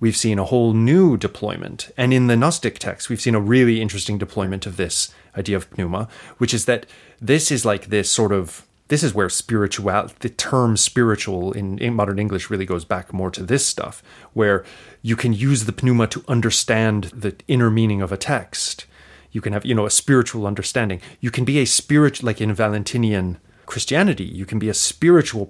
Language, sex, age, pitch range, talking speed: English, male, 30-49, 100-125 Hz, 200 wpm